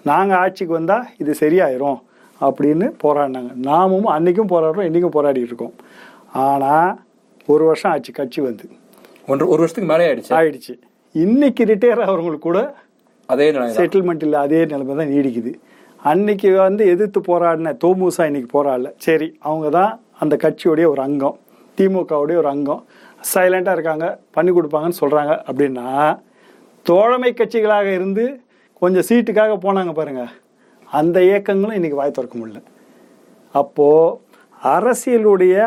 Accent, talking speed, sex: native, 120 wpm, male